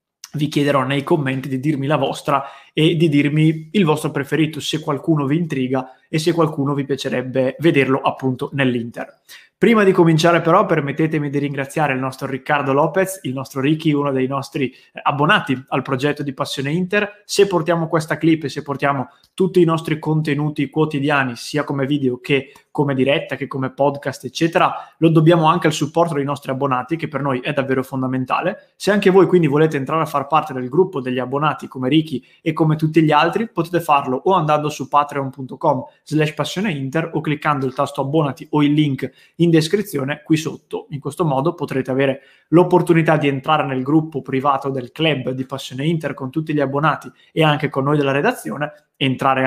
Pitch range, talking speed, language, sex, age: 135-160 Hz, 185 wpm, English, male, 20-39